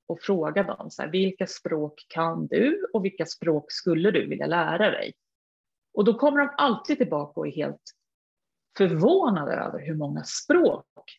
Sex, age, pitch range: female, 30-49, 185-250 Hz